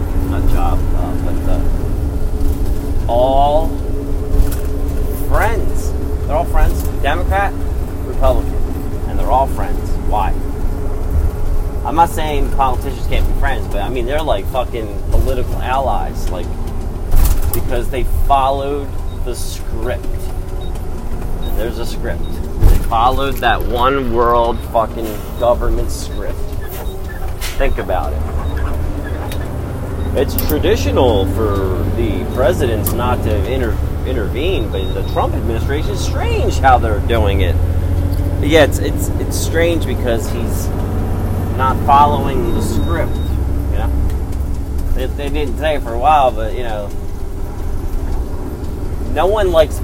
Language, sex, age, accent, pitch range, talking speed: English, male, 30-49, American, 75-95 Hz, 120 wpm